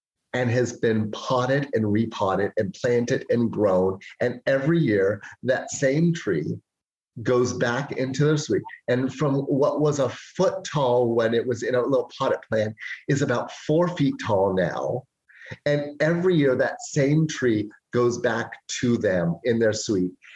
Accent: American